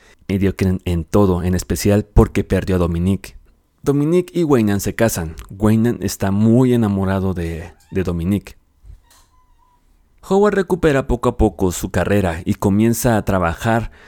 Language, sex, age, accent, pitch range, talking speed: Spanish, male, 30-49, Mexican, 90-130 Hz, 135 wpm